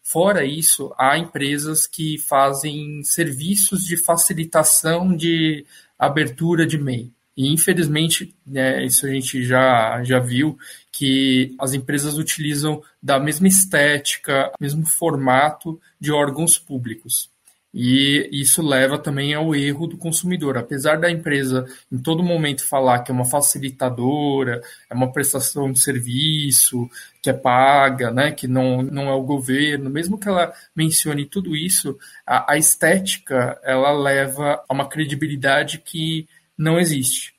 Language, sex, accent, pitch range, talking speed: Portuguese, male, Brazilian, 130-155 Hz, 135 wpm